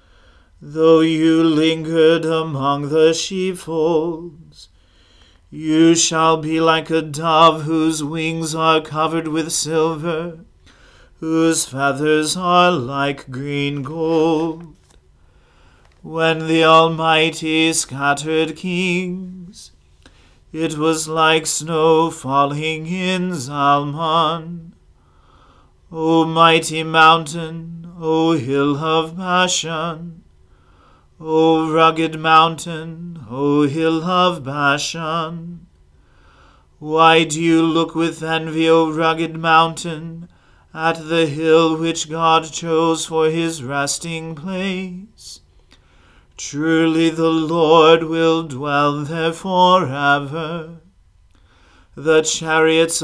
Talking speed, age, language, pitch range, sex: 90 wpm, 40-59, English, 145-165 Hz, male